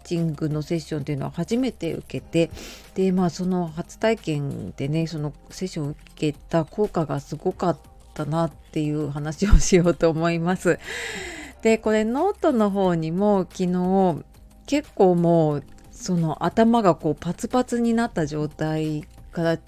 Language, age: Japanese, 40-59